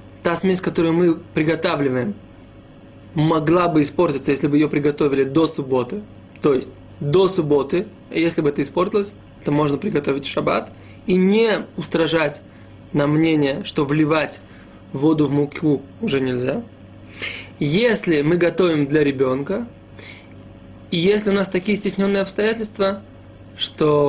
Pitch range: 110-175 Hz